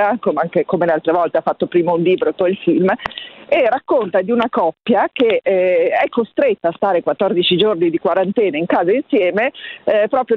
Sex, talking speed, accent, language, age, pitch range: female, 190 wpm, native, Italian, 40-59, 180-230 Hz